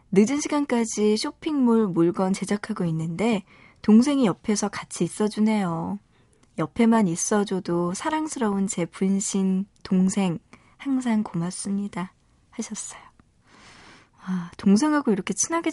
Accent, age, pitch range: native, 20-39, 180-230 Hz